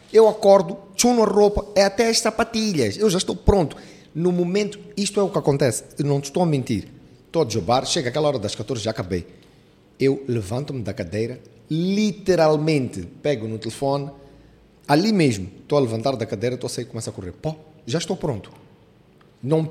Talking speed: 190 wpm